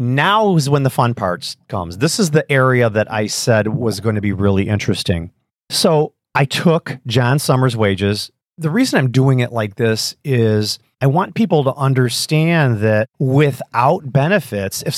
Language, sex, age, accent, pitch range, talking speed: English, male, 40-59, American, 110-145 Hz, 170 wpm